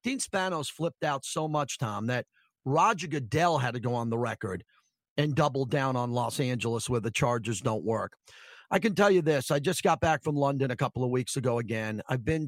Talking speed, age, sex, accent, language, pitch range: 220 wpm, 40-59, male, American, English, 130-175 Hz